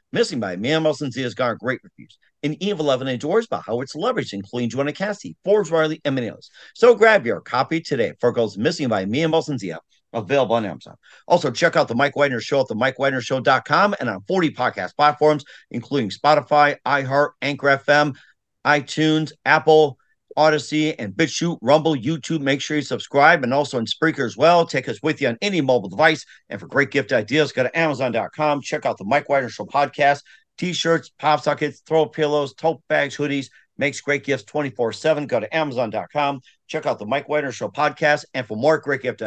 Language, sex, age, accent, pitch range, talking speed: English, male, 50-69, American, 125-150 Hz, 195 wpm